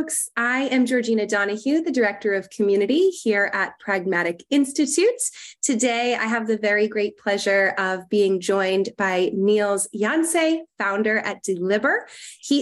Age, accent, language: 20-39, American, English